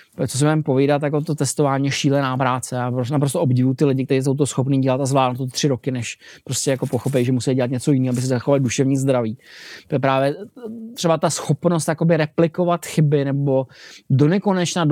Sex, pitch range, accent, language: male, 130-150 Hz, native, Czech